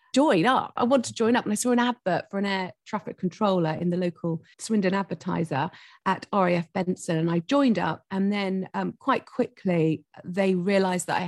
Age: 40-59